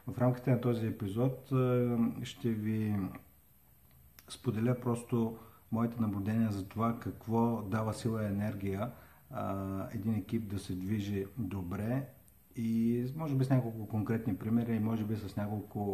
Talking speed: 135 wpm